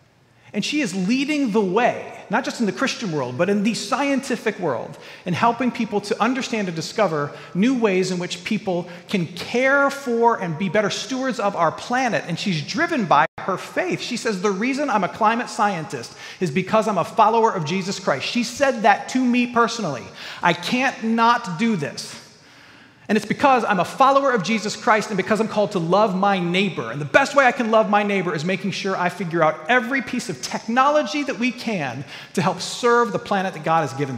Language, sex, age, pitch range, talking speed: English, male, 40-59, 185-255 Hz, 210 wpm